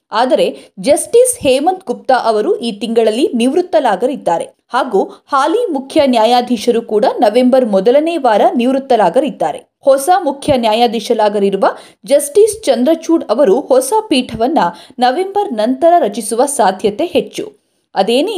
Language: Kannada